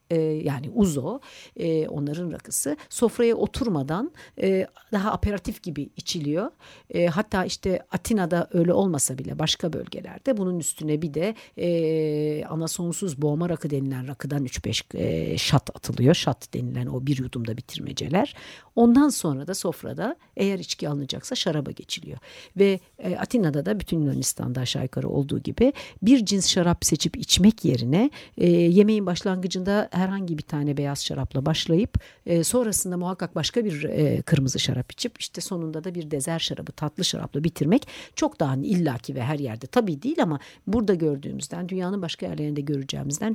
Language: Turkish